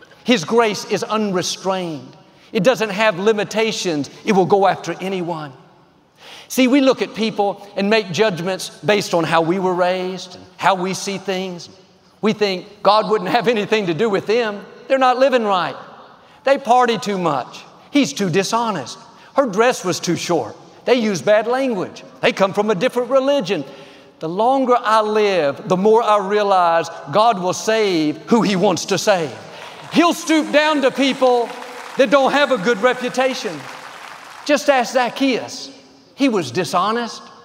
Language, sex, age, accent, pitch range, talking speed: English, male, 50-69, American, 185-245 Hz, 160 wpm